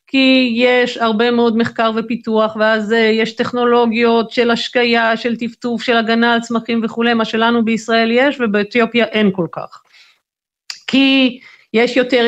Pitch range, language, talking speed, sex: 220-260 Hz, Hebrew, 140 wpm, female